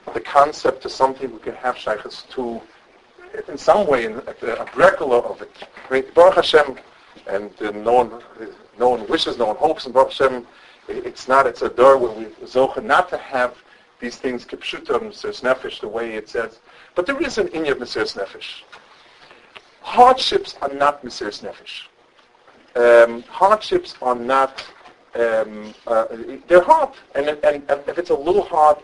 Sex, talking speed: male, 170 wpm